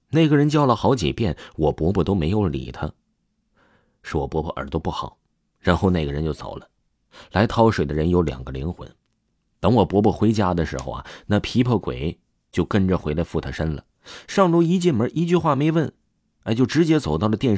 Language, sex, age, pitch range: Chinese, male, 30-49, 80-115 Hz